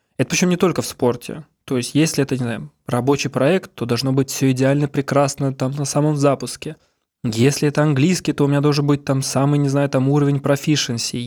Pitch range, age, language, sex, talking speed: 130-150 Hz, 20-39, Russian, male, 210 wpm